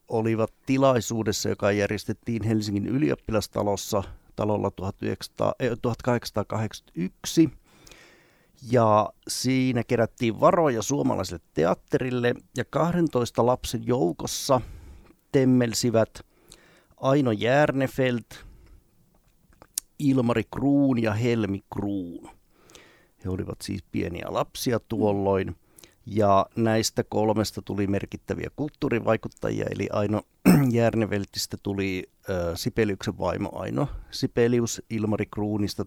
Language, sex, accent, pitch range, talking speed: Finnish, male, native, 100-120 Hz, 80 wpm